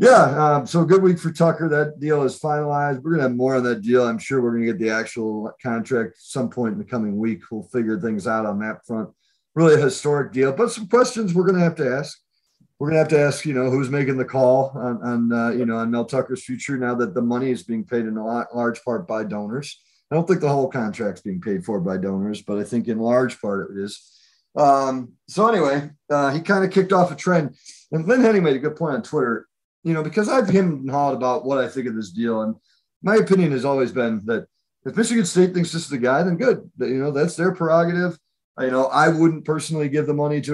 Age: 40-59